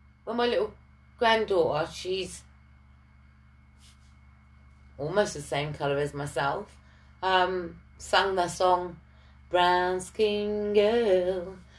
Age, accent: 30-49, British